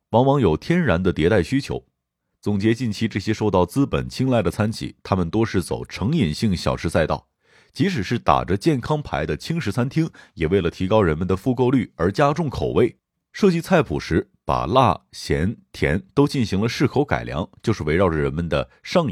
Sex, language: male, Chinese